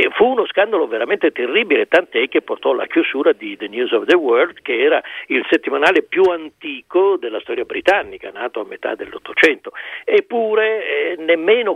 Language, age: Italian, 50-69